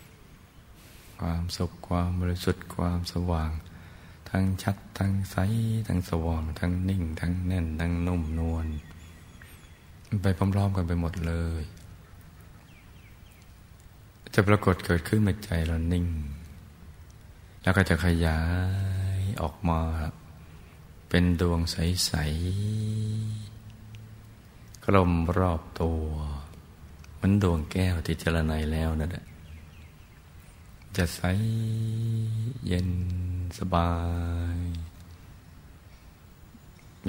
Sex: male